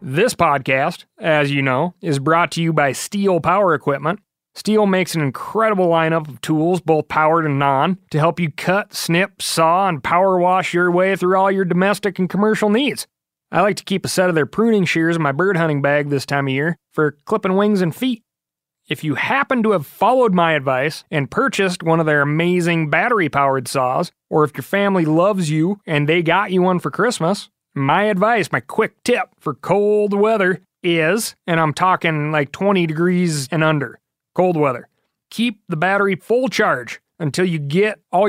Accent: American